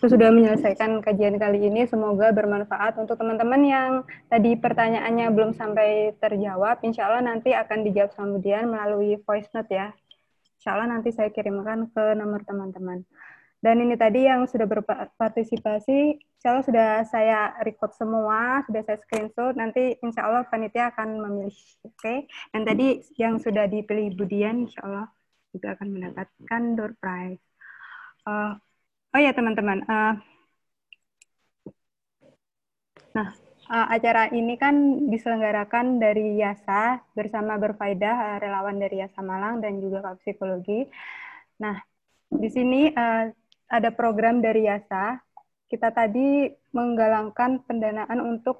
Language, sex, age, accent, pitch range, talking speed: Indonesian, female, 20-39, native, 210-235 Hz, 130 wpm